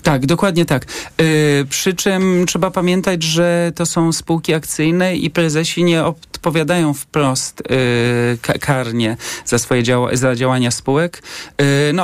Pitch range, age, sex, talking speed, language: 140-170 Hz, 40-59, male, 145 wpm, Polish